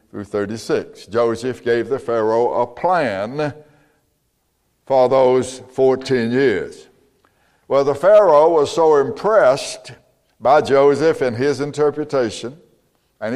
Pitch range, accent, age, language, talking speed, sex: 130-170 Hz, American, 60-79, English, 105 wpm, male